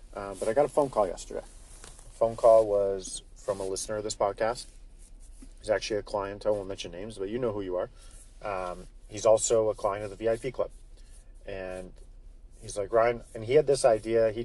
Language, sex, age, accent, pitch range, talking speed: English, male, 30-49, American, 95-115 Hz, 210 wpm